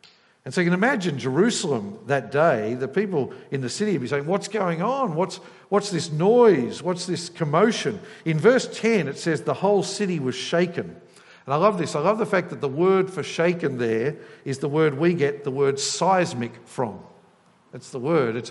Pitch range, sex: 140-195 Hz, male